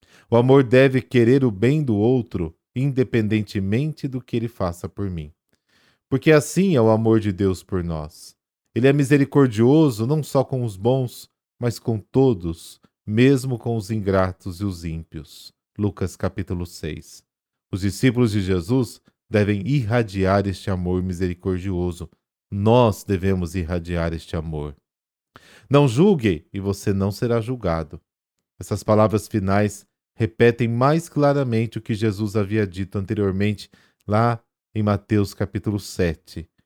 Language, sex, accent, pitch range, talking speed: Portuguese, male, Brazilian, 95-125 Hz, 135 wpm